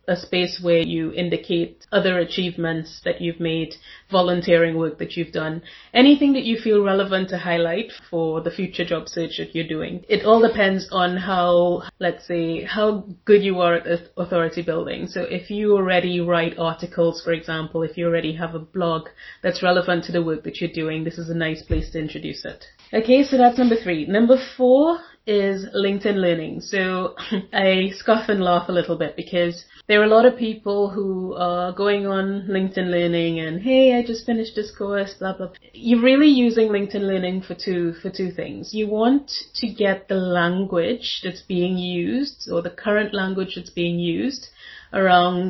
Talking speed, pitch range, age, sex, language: 185 wpm, 175-205 Hz, 30-49, female, English